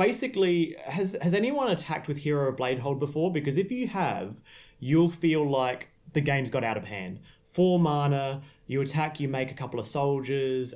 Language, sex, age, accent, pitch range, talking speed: English, male, 30-49, Australian, 125-155 Hz, 185 wpm